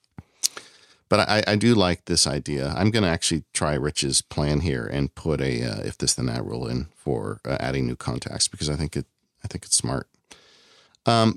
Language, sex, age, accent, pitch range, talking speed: English, male, 40-59, American, 70-95 Hz, 190 wpm